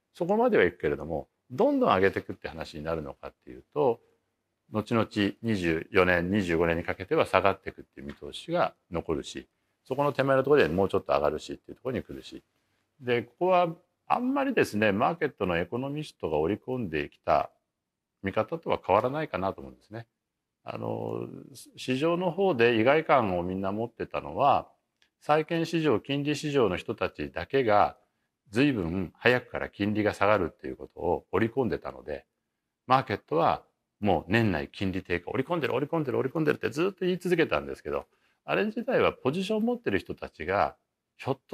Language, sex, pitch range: Japanese, male, 95-160 Hz